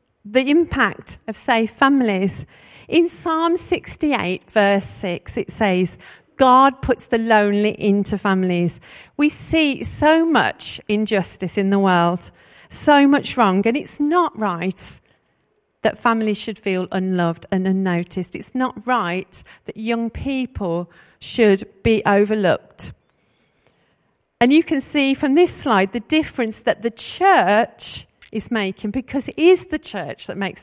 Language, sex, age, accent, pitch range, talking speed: English, female, 40-59, British, 195-270 Hz, 135 wpm